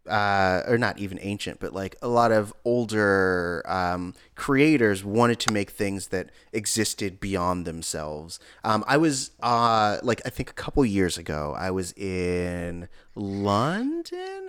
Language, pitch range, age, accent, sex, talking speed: English, 95-120 Hz, 30-49, American, male, 150 wpm